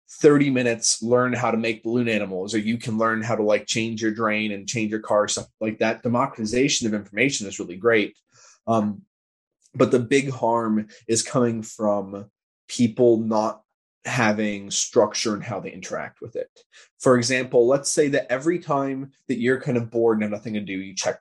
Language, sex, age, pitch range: English, male, 20-39, 110-140 Hz